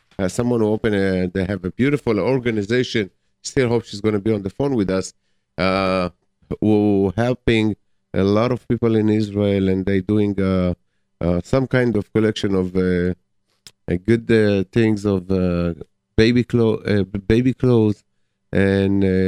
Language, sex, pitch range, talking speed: English, male, 95-115 Hz, 165 wpm